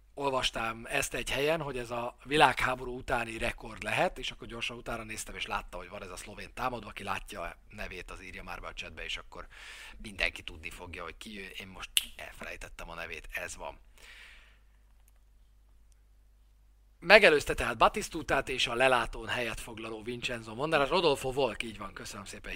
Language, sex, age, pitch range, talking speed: Hungarian, male, 40-59, 105-130 Hz, 175 wpm